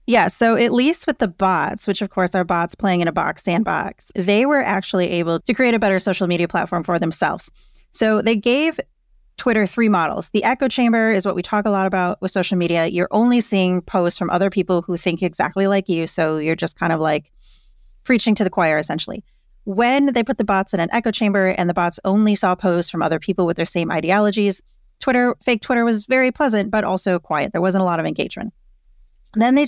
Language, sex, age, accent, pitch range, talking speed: English, female, 30-49, American, 175-225 Hz, 225 wpm